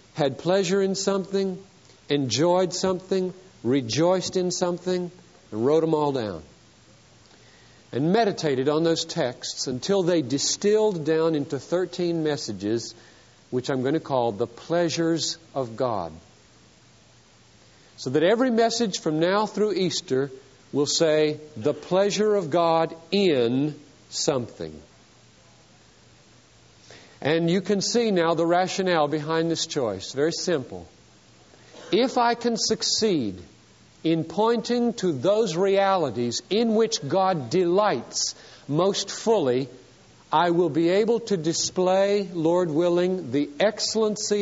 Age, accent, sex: 50-69, American, male